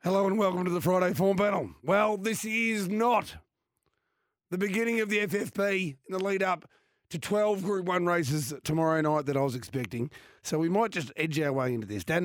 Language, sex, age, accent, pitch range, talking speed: English, male, 40-59, Australian, 135-180 Hz, 200 wpm